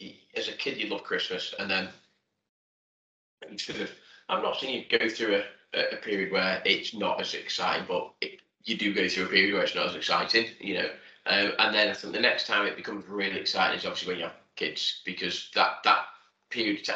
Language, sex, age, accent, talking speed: English, male, 20-39, British, 225 wpm